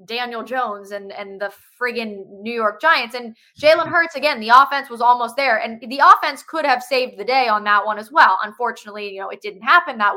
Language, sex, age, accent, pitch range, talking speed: English, female, 20-39, American, 230-325 Hz, 225 wpm